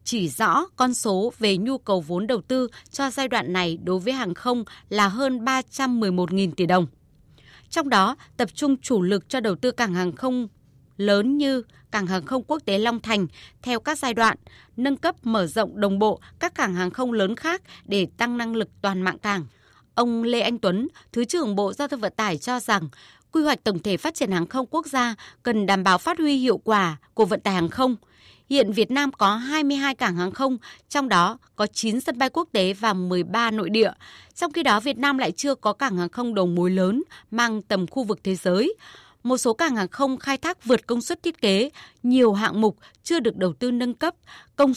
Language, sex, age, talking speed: Vietnamese, female, 20-39, 220 wpm